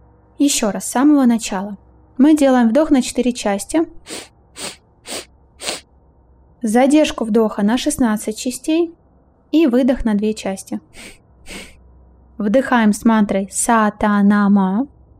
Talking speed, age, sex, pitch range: 100 wpm, 20-39, female, 200-260 Hz